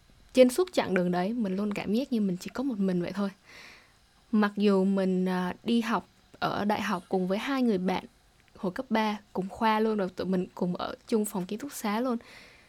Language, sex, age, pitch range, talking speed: Vietnamese, female, 10-29, 190-235 Hz, 220 wpm